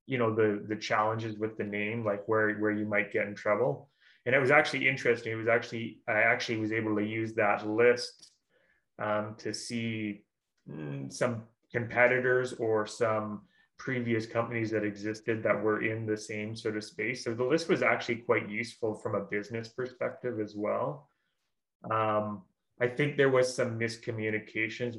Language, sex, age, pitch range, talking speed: English, male, 20-39, 105-115 Hz, 170 wpm